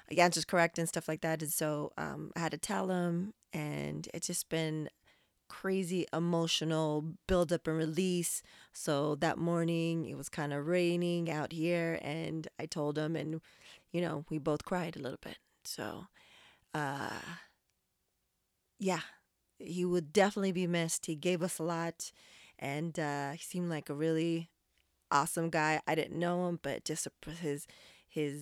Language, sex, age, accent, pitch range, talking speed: English, female, 20-39, American, 150-175 Hz, 165 wpm